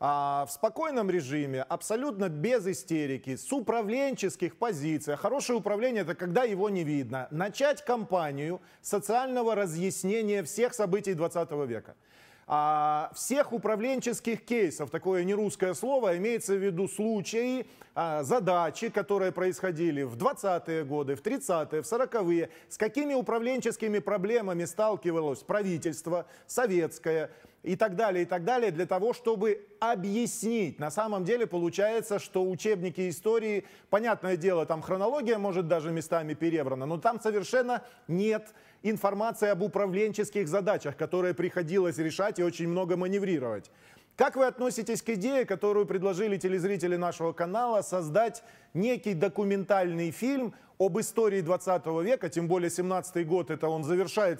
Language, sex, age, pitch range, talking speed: Russian, male, 30-49, 170-225 Hz, 130 wpm